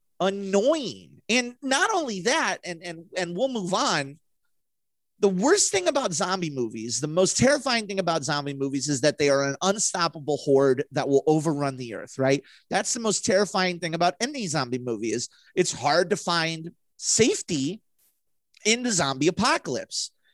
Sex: male